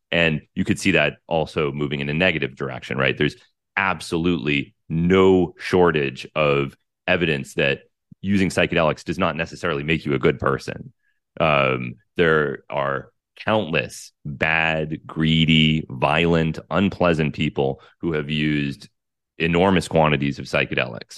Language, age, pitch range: English, 30-49, 75-90 Hz